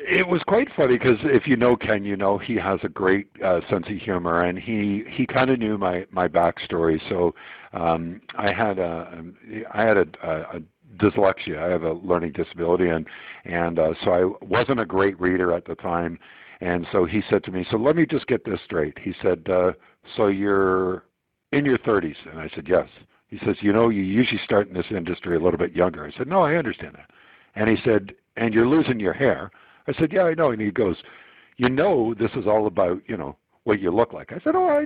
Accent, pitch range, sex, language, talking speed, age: American, 95-155 Hz, male, English, 230 wpm, 60-79